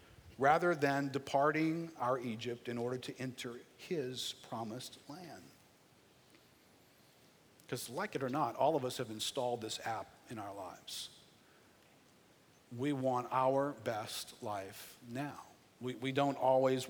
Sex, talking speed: male, 130 wpm